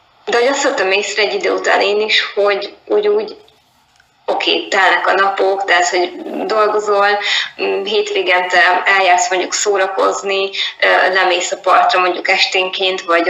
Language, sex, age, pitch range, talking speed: Hungarian, female, 20-39, 185-225 Hz, 130 wpm